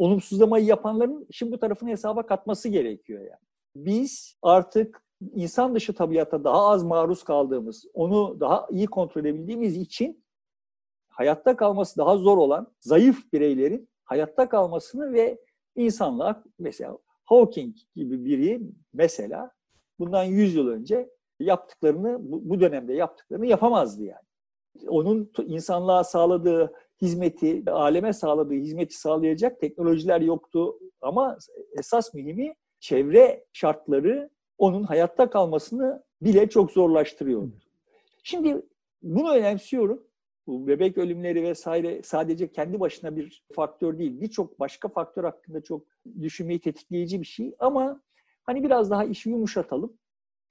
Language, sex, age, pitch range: Turkish, male, 50-69, 170-240 Hz